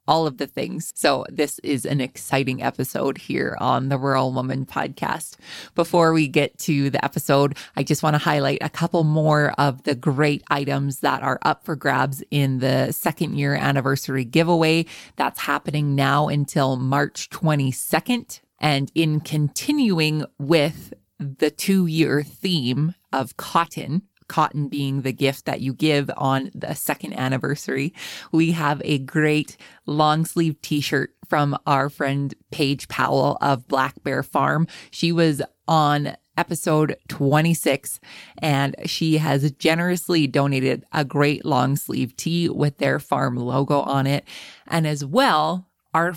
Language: English